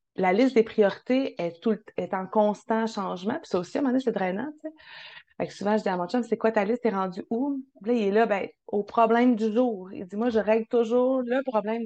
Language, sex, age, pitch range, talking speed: French, female, 30-49, 205-245 Hz, 270 wpm